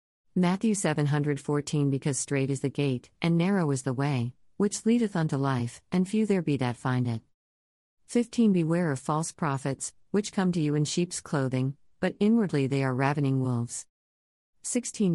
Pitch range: 130-165 Hz